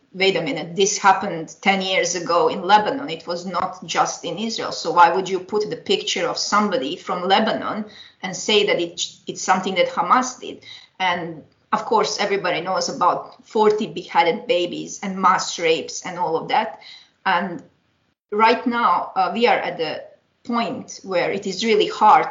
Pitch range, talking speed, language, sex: 180-235 Hz, 180 wpm, English, female